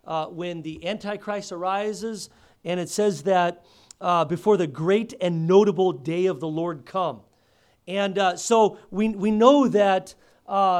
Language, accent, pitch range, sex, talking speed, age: English, American, 145-195 Hz, male, 155 wpm, 40-59